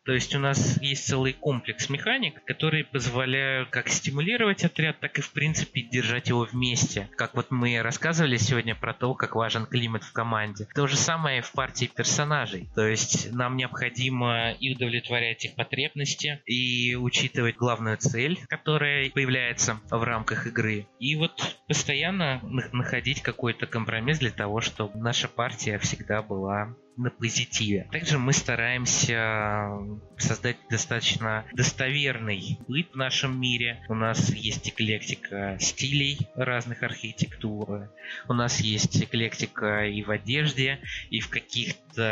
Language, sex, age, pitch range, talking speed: Russian, male, 20-39, 110-135 Hz, 140 wpm